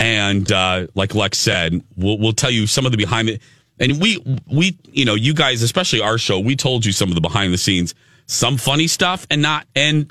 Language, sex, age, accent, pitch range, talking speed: English, male, 40-59, American, 110-140 Hz, 230 wpm